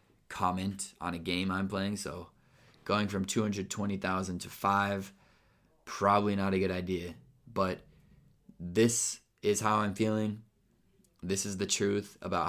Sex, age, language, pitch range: male, 20-39, Italian, 90-100 Hz